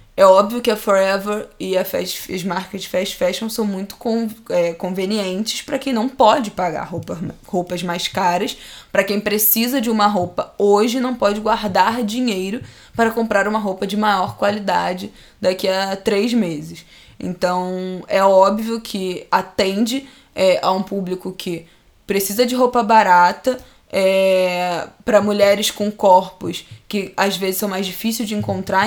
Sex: female